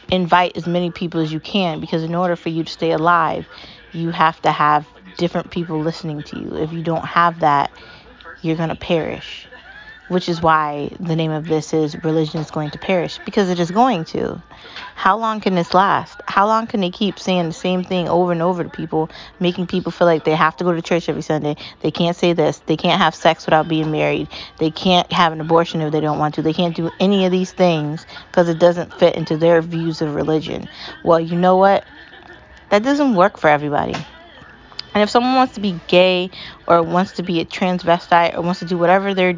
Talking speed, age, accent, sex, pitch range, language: 225 wpm, 20-39, American, female, 165-190 Hz, English